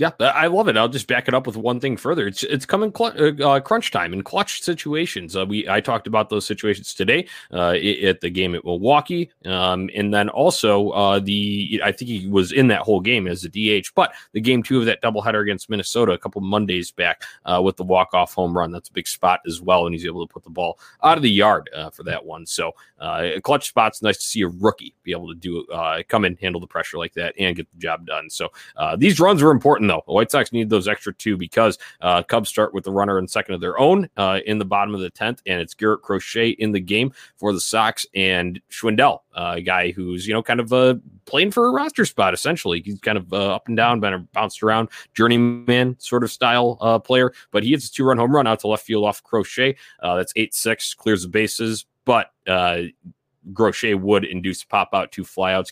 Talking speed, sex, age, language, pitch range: 240 wpm, male, 20-39, English, 95-120 Hz